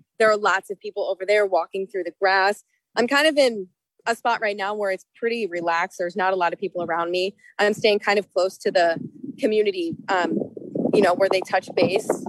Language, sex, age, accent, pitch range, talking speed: English, female, 20-39, American, 190-245 Hz, 225 wpm